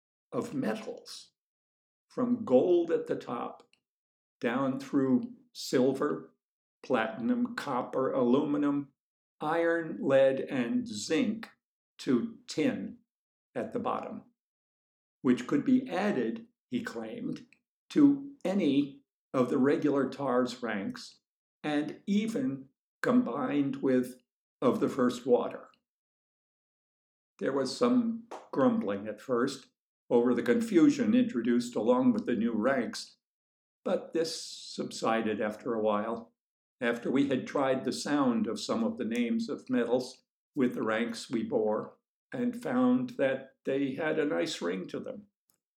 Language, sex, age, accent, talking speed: English, male, 60-79, American, 120 wpm